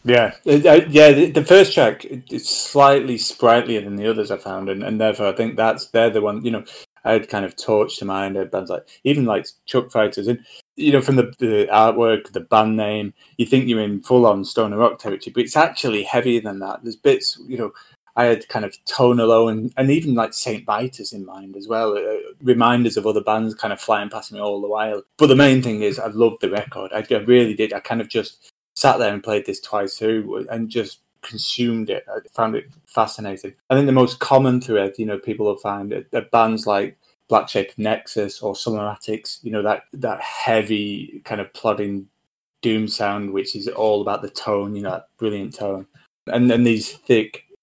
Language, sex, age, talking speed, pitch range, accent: English, male, 20-39, 225 wpm, 105-120 Hz, British